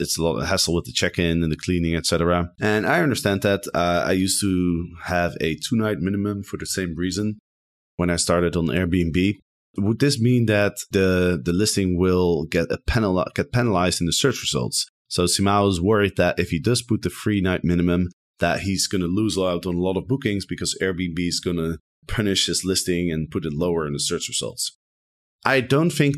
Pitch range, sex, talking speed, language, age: 85-100 Hz, male, 210 wpm, English, 30-49